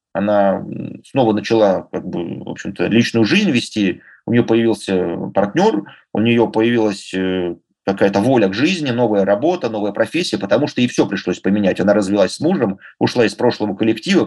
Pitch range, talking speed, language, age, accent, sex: 100-125 Hz, 165 wpm, Russian, 30-49, native, male